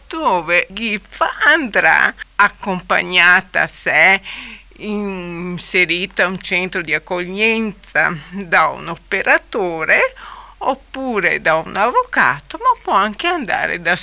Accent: native